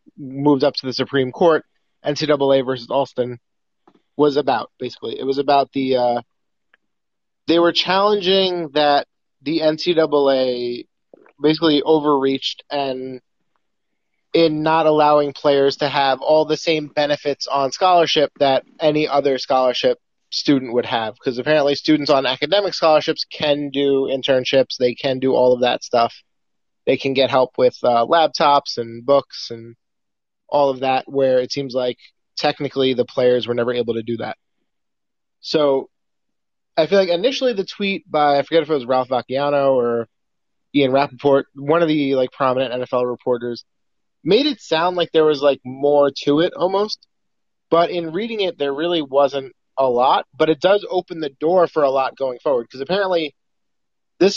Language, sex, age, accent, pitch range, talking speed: English, male, 20-39, American, 130-160 Hz, 160 wpm